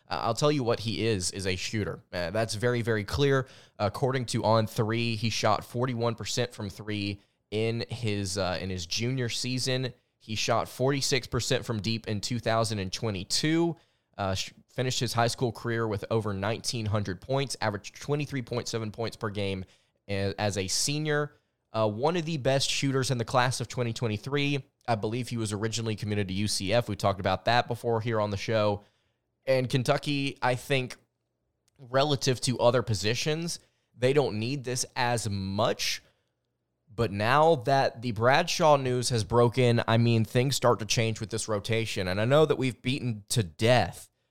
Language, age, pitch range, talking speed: English, 20-39, 105-125 Hz, 165 wpm